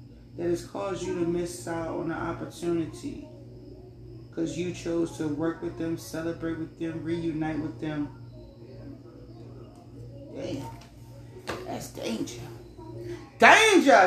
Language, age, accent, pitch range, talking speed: English, 30-49, American, 120-180 Hz, 115 wpm